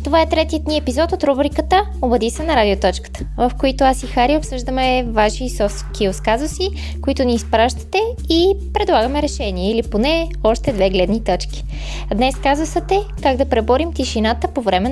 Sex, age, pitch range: female, 20-39, 205-275 Hz